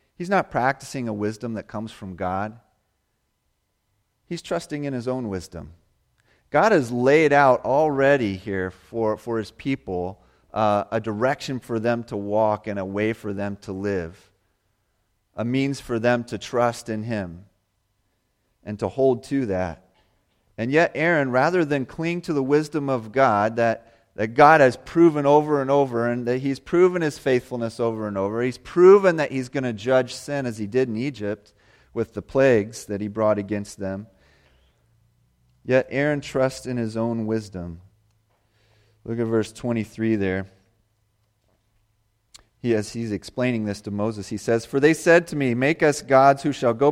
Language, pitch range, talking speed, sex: English, 105-130 Hz, 170 wpm, male